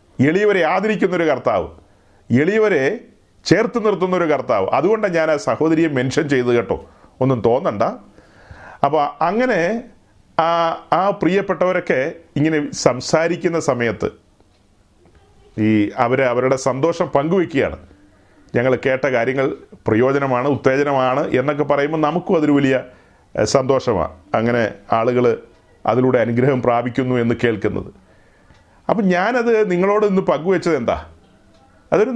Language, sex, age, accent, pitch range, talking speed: Malayalam, male, 40-59, native, 115-185 Hz, 100 wpm